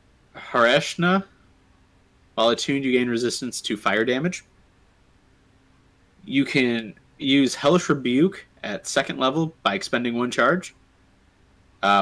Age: 30-49